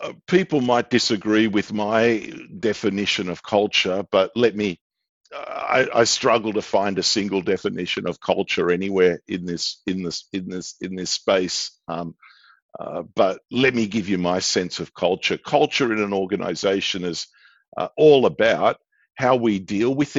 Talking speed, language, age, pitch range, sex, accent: 150 wpm, English, 50-69, 100-130 Hz, male, Australian